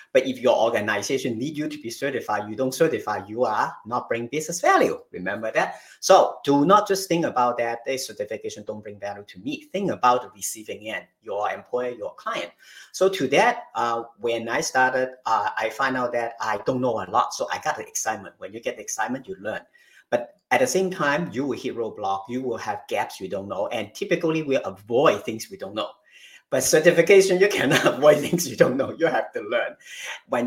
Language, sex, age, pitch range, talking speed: English, male, 50-69, 115-190 Hz, 215 wpm